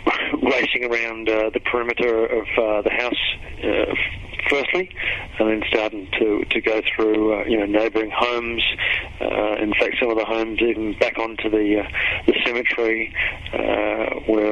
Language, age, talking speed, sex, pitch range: English, 40-59, 155 wpm, male, 110-120 Hz